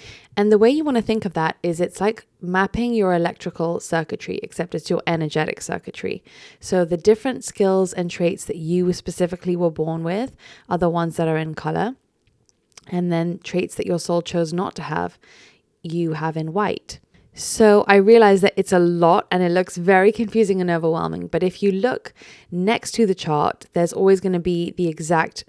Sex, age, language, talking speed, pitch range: female, 20-39, English, 195 wpm, 170-200 Hz